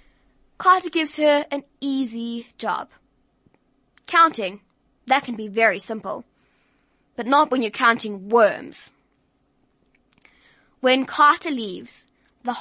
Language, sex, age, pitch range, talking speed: English, female, 20-39, 210-260 Hz, 105 wpm